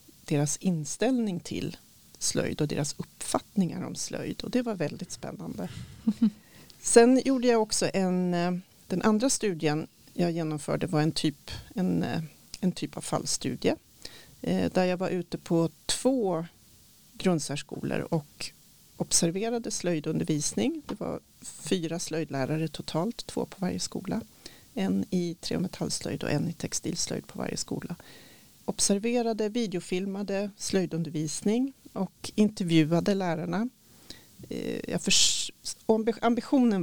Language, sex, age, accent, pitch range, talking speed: Swedish, female, 40-59, native, 155-205 Hz, 120 wpm